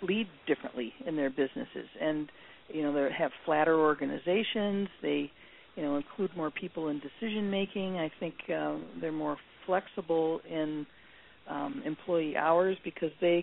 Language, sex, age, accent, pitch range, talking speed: English, female, 50-69, American, 145-175 Hz, 145 wpm